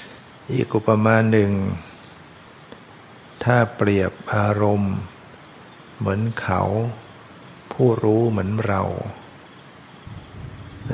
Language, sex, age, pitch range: Thai, male, 60-79, 100-115 Hz